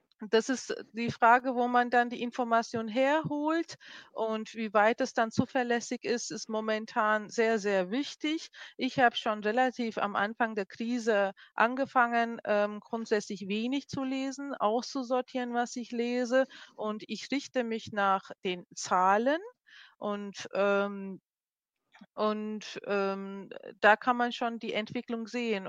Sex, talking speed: female, 130 wpm